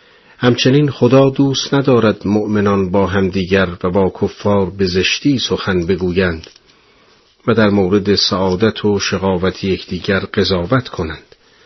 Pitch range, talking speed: 95-115 Hz, 125 wpm